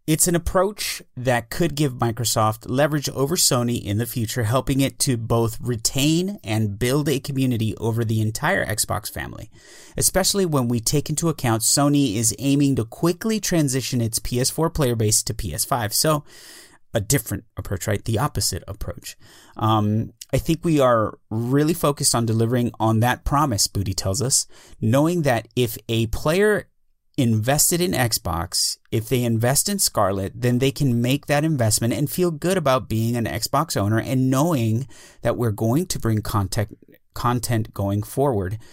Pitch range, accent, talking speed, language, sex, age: 110-140 Hz, American, 165 wpm, English, male, 30-49